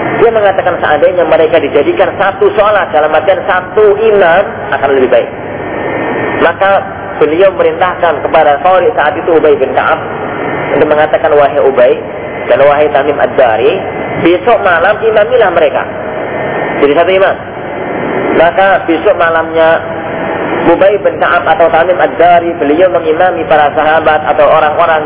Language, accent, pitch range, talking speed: Indonesian, native, 160-215 Hz, 125 wpm